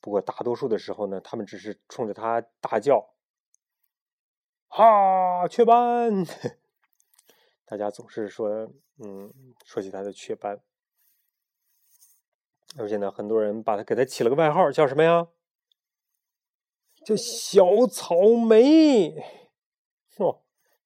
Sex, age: male, 30-49